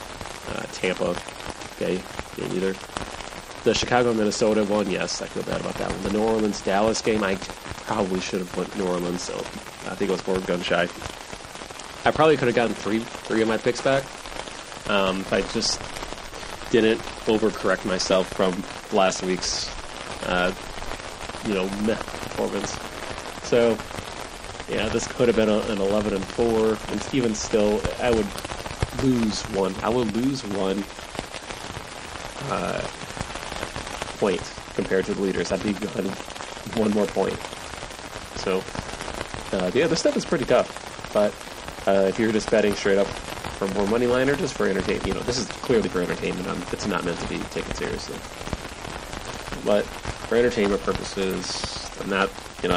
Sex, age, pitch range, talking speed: male, 30-49, 95-110 Hz, 155 wpm